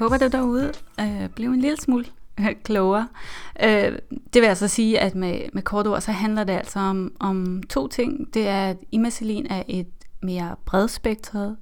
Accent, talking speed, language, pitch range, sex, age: native, 175 wpm, Danish, 195-230 Hz, female, 30-49